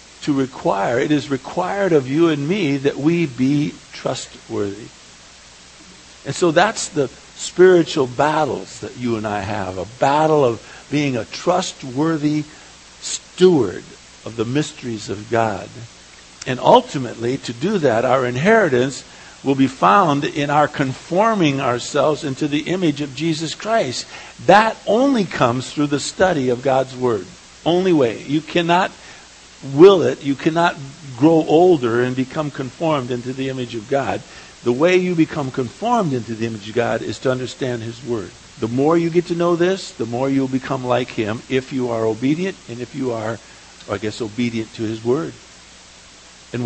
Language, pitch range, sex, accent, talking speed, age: English, 120-160 Hz, male, American, 160 wpm, 60-79